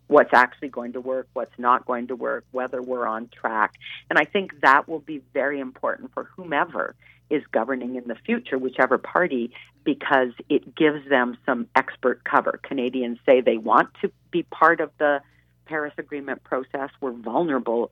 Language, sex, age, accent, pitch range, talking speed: English, female, 40-59, American, 125-155 Hz, 175 wpm